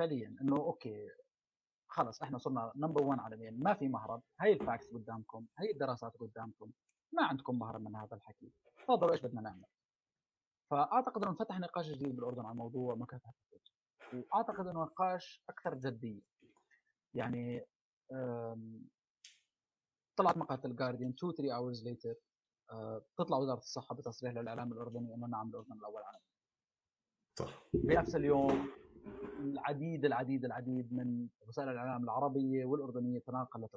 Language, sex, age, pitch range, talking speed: Arabic, male, 30-49, 120-170 Hz, 130 wpm